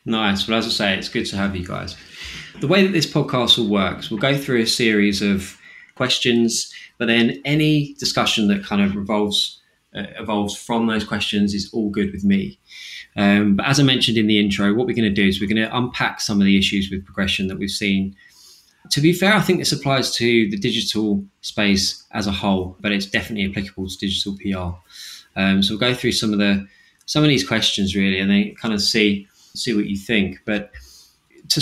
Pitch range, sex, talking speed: 95-115 Hz, male, 220 wpm